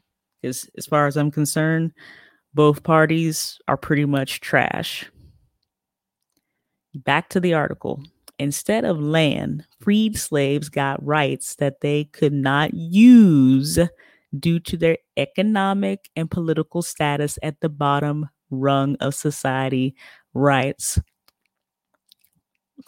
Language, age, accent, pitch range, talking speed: English, 30-49, American, 140-160 Hz, 110 wpm